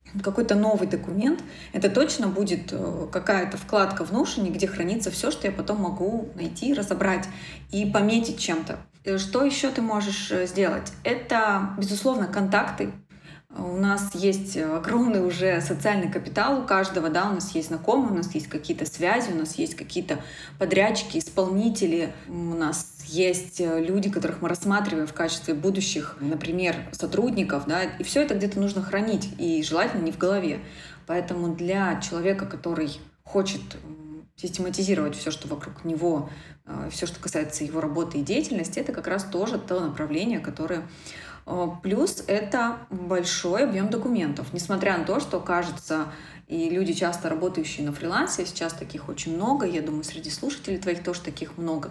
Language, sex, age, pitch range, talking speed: Russian, female, 20-39, 165-200 Hz, 150 wpm